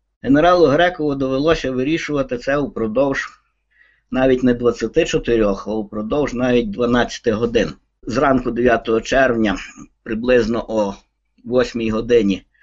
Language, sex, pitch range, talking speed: Ukrainian, male, 115-150 Hz, 100 wpm